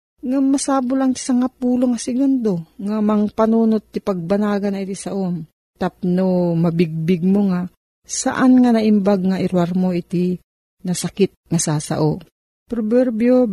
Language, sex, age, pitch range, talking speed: Filipino, female, 40-59, 175-240 Hz, 140 wpm